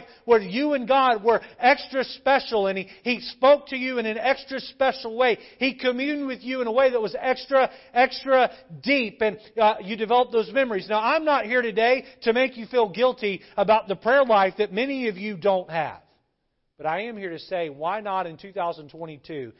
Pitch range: 175-245 Hz